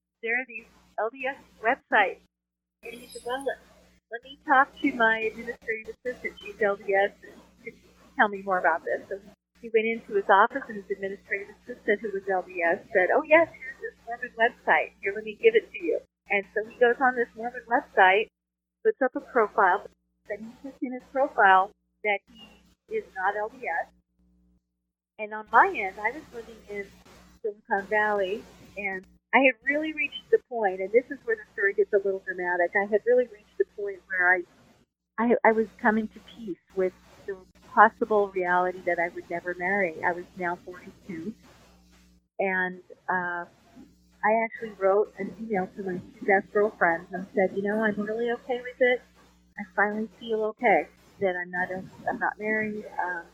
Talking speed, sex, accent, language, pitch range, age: 180 wpm, female, American, English, 185-240 Hz, 30-49